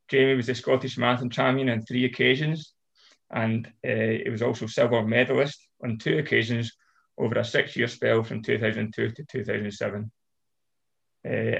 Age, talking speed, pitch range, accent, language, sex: 20-39, 140 wpm, 115-130 Hz, British, English, male